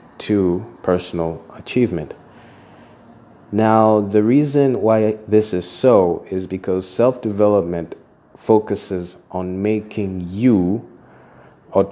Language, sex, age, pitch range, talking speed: English, male, 30-49, 90-110 Hz, 90 wpm